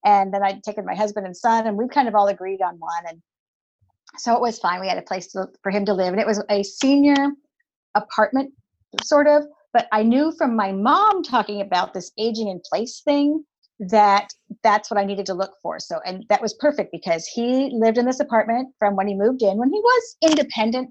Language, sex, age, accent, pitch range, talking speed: English, female, 50-69, American, 195-265 Hz, 225 wpm